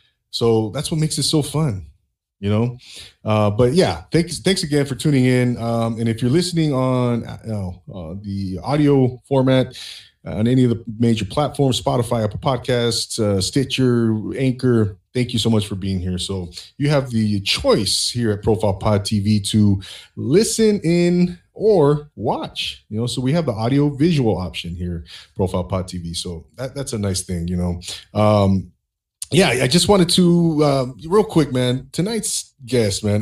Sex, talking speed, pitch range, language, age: male, 175 wpm, 100-135 Hz, English, 30-49